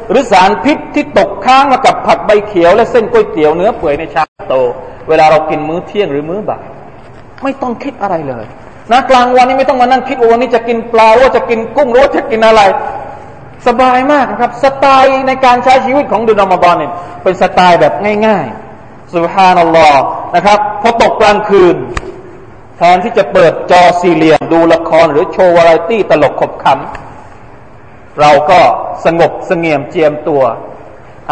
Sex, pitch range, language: male, 165-245 Hz, Thai